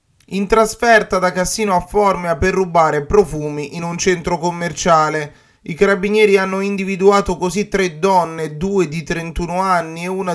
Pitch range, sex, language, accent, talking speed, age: 150-190 Hz, male, Italian, native, 150 wpm, 20-39